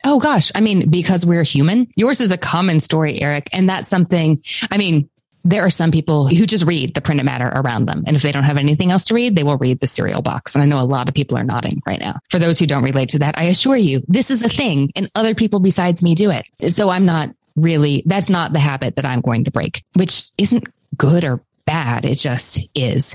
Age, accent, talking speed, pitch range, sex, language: 20-39, American, 250 wpm, 140-180 Hz, female, English